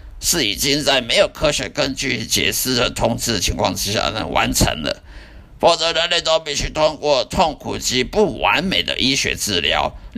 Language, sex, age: Chinese, male, 50-69